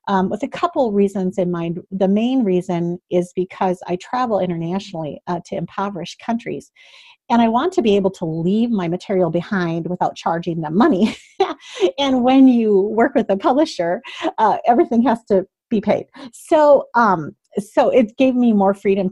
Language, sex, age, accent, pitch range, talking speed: English, female, 40-59, American, 180-235 Hz, 175 wpm